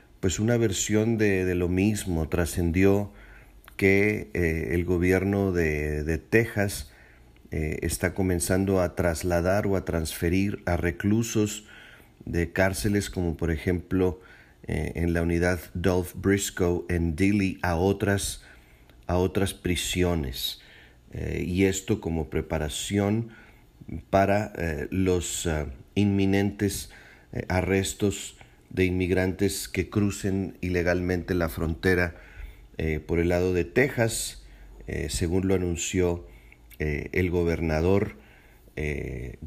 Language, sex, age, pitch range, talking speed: Spanish, male, 40-59, 85-100 Hz, 110 wpm